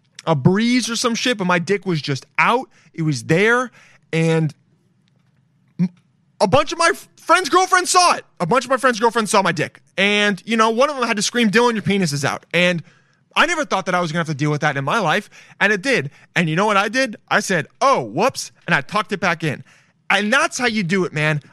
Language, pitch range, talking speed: English, 150-215 Hz, 250 wpm